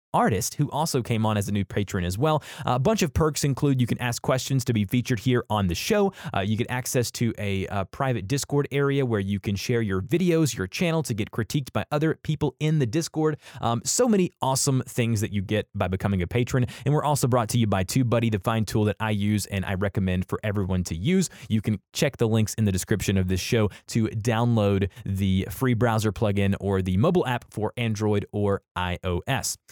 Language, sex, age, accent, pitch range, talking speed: English, male, 20-39, American, 110-145 Hz, 230 wpm